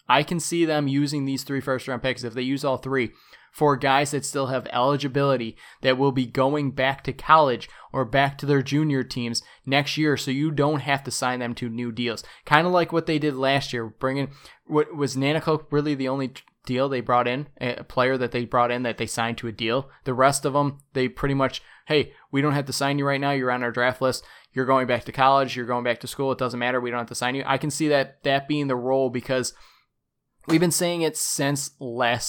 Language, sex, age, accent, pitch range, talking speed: English, male, 20-39, American, 130-155 Hz, 240 wpm